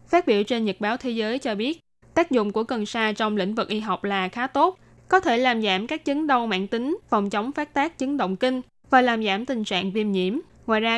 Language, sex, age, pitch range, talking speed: Vietnamese, female, 10-29, 205-260 Hz, 255 wpm